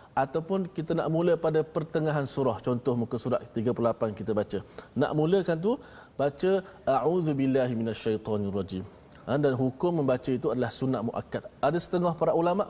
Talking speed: 140 wpm